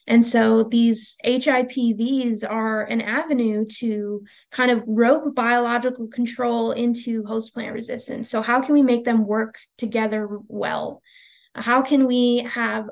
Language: English